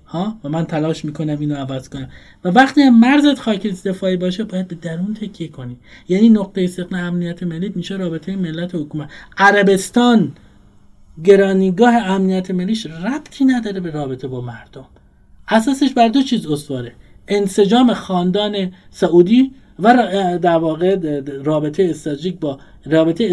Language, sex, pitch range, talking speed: Persian, male, 150-210 Hz, 140 wpm